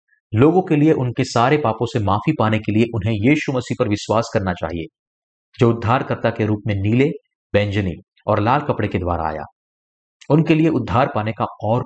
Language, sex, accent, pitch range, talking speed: Hindi, male, native, 105-145 Hz, 185 wpm